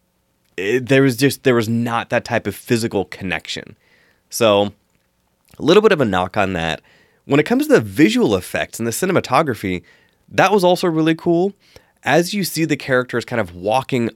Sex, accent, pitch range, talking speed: male, American, 95-135 Hz, 180 wpm